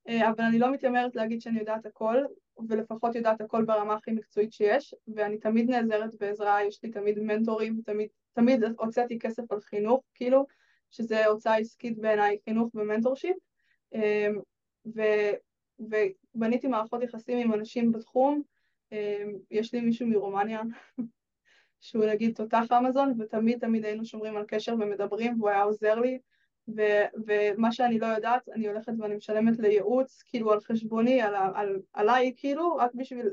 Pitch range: 215-240 Hz